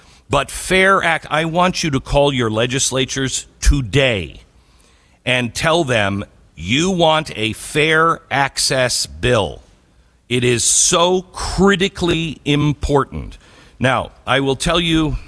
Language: English